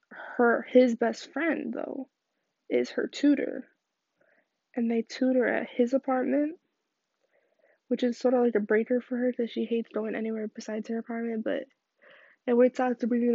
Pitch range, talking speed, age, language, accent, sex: 230-265 Hz, 160 wpm, 10-29, English, American, female